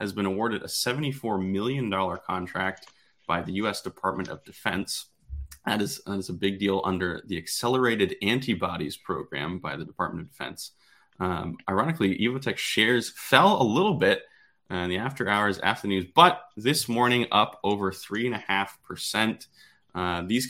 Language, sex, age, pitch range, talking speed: English, male, 20-39, 95-120 Hz, 165 wpm